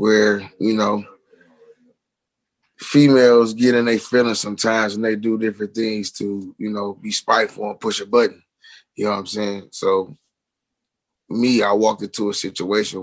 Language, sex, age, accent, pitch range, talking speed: English, male, 20-39, American, 100-115 Hz, 160 wpm